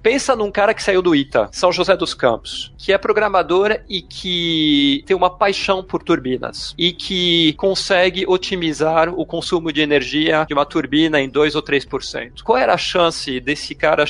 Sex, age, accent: male, 40-59, Brazilian